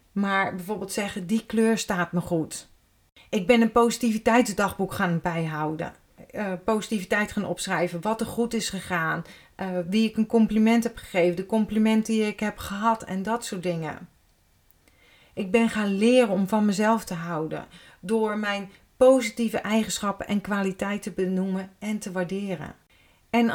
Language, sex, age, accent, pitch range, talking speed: Dutch, female, 40-59, Dutch, 185-225 Hz, 150 wpm